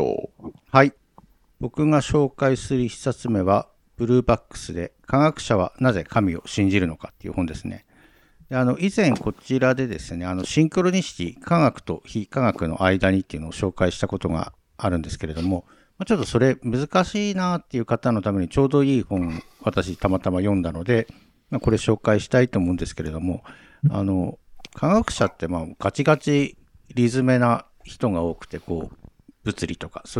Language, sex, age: Japanese, male, 50-69